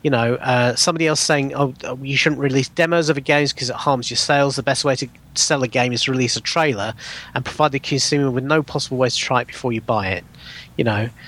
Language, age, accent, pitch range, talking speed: English, 40-59, British, 125-155 Hz, 255 wpm